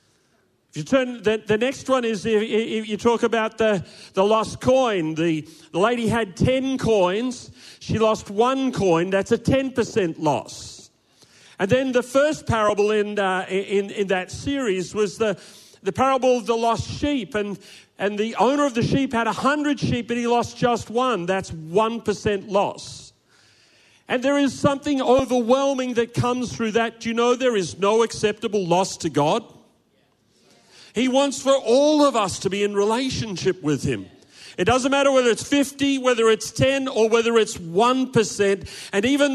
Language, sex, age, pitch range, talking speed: English, male, 40-59, 200-255 Hz, 170 wpm